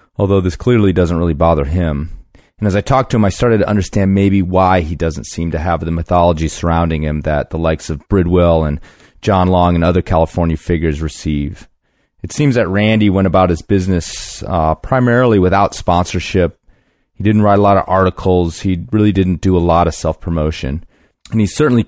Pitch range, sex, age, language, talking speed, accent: 80-100 Hz, male, 30-49, English, 195 wpm, American